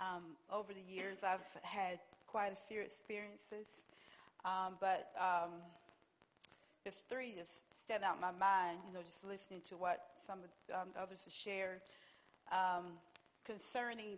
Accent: American